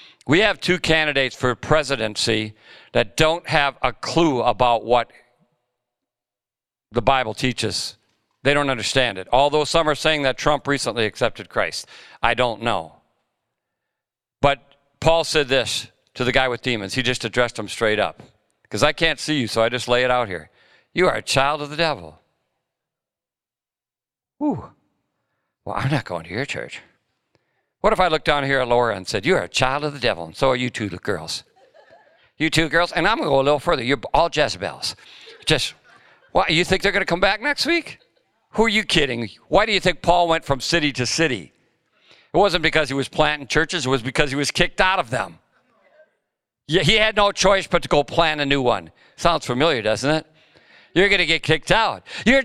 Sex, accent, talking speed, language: male, American, 195 wpm, English